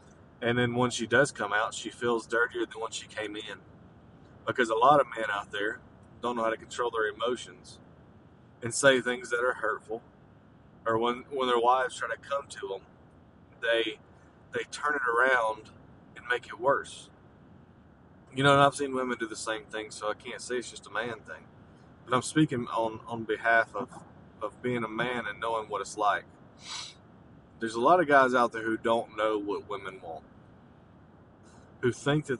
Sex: male